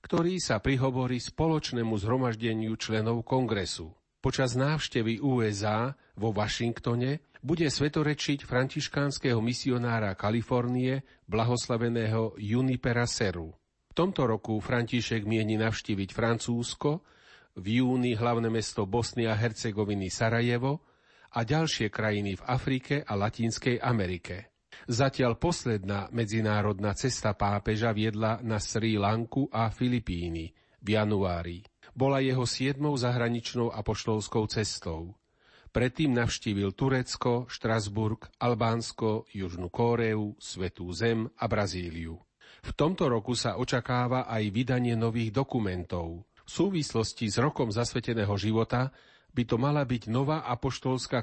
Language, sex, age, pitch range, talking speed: Slovak, male, 40-59, 110-130 Hz, 110 wpm